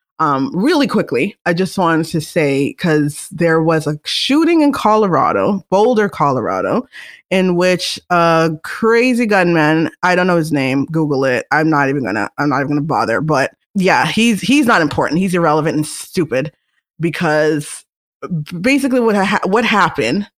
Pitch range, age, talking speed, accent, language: 160-215 Hz, 20-39, 155 wpm, American, English